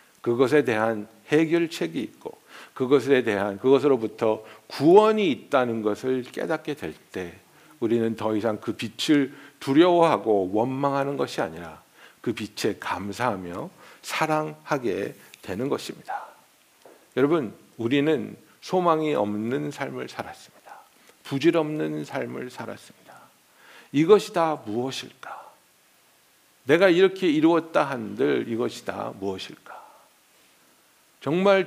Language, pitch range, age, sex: Korean, 115-170 Hz, 60-79, male